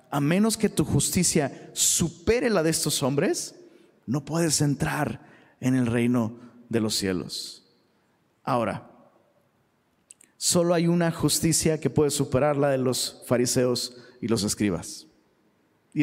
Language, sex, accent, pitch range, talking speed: Spanish, male, Mexican, 150-200 Hz, 130 wpm